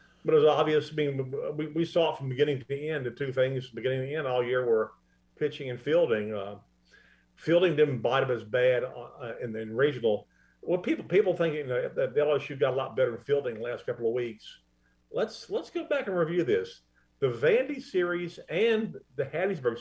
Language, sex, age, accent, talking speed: English, male, 50-69, American, 215 wpm